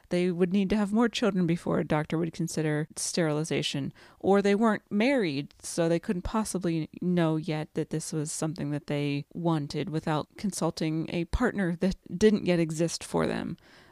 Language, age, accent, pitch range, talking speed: English, 30-49, American, 160-190 Hz, 175 wpm